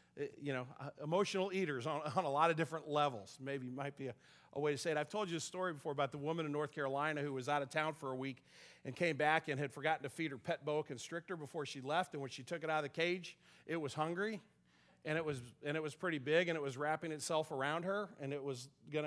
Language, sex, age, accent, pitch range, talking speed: English, male, 40-59, American, 140-190 Hz, 275 wpm